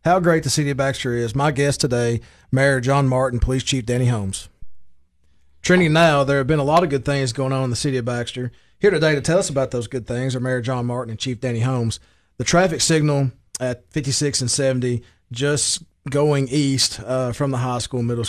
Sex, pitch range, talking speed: male, 125-150 Hz, 220 wpm